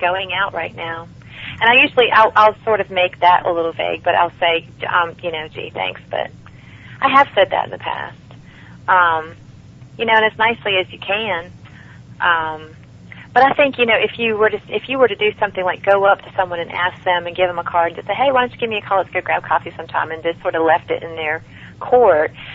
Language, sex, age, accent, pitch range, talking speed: English, female, 40-59, American, 165-195 Hz, 255 wpm